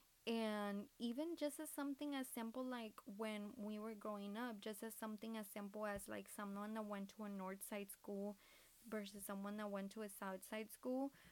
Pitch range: 205-235 Hz